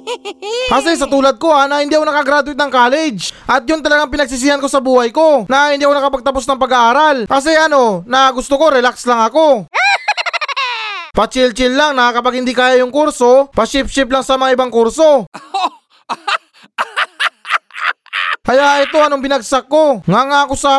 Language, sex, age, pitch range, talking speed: Filipino, male, 20-39, 240-290 Hz, 165 wpm